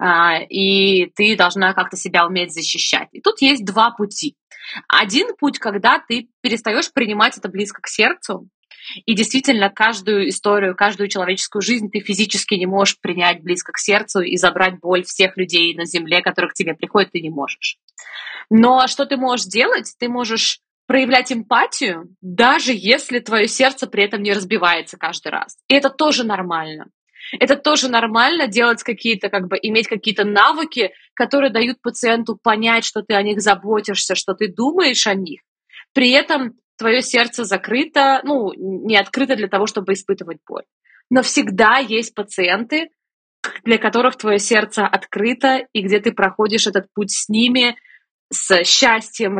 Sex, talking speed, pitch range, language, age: female, 160 wpm, 195-245 Hz, Russian, 20-39